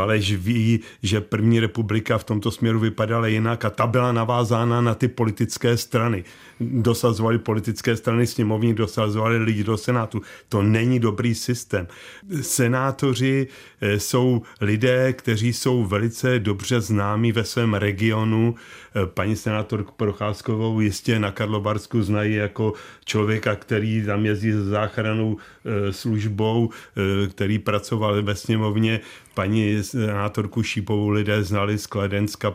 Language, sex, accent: Czech, male, native